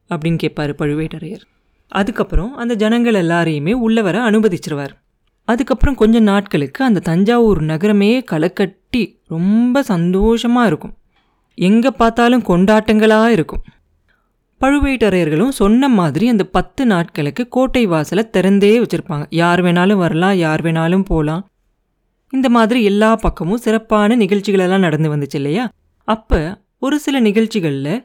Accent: native